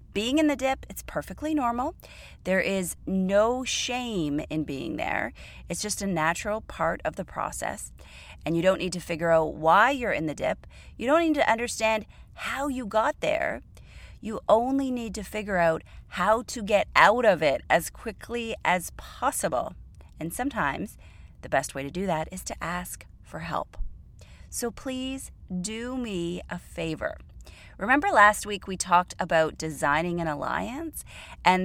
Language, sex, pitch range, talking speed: English, female, 165-245 Hz, 165 wpm